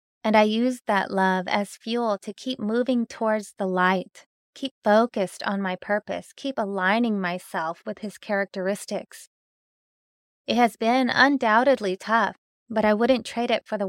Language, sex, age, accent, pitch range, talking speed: English, female, 20-39, American, 195-230 Hz, 155 wpm